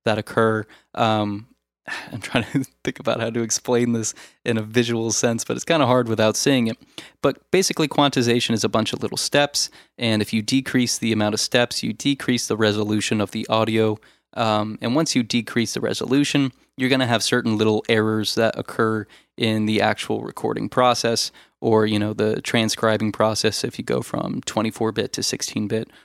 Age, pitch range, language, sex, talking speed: 20-39, 110-120 Hz, English, male, 190 wpm